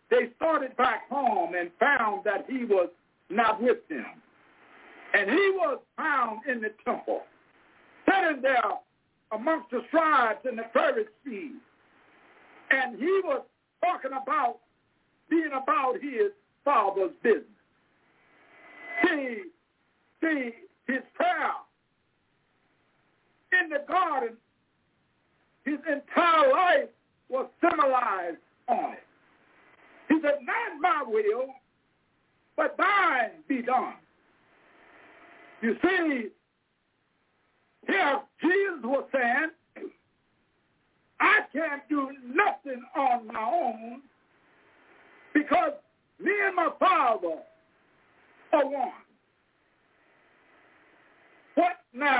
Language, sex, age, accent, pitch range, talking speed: English, male, 60-79, American, 260-355 Hz, 95 wpm